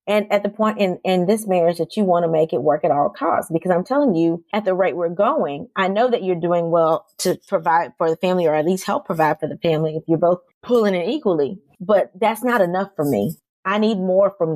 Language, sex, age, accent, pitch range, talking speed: English, female, 30-49, American, 180-230 Hz, 255 wpm